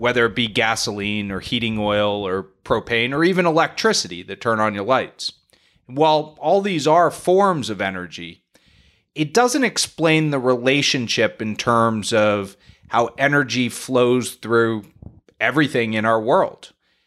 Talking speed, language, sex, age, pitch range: 140 wpm, English, male, 30-49, 105-140 Hz